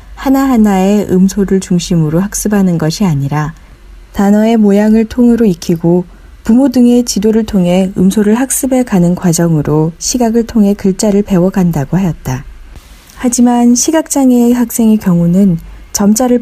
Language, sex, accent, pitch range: Korean, female, native, 170-225 Hz